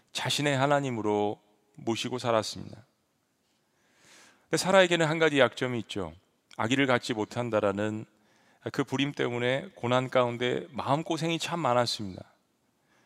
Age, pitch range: 40-59, 110-145 Hz